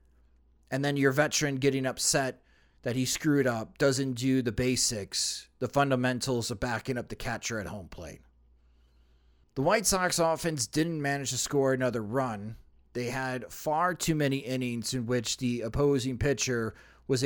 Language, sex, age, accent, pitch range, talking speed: English, male, 30-49, American, 110-165 Hz, 160 wpm